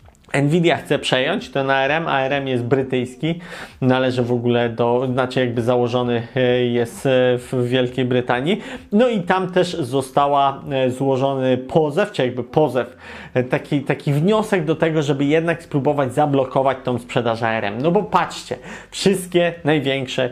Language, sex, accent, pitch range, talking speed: Polish, male, native, 130-155 Hz, 135 wpm